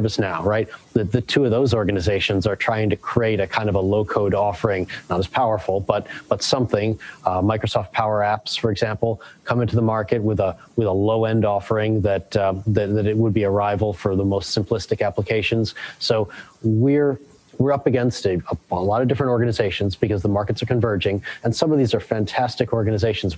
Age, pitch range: 30-49, 105-120 Hz